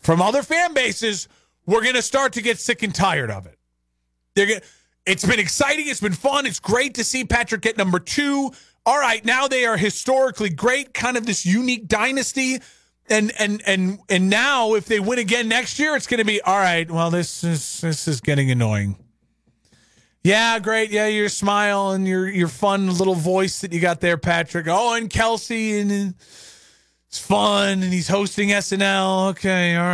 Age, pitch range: 30-49, 170-230 Hz